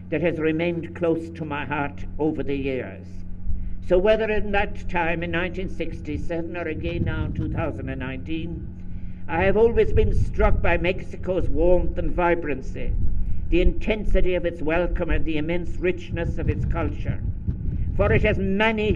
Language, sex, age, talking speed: English, male, 60-79, 150 wpm